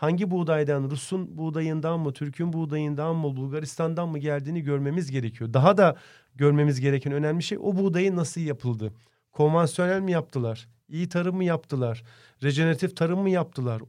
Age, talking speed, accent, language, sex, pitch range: 40-59, 145 wpm, native, Turkish, male, 140-180 Hz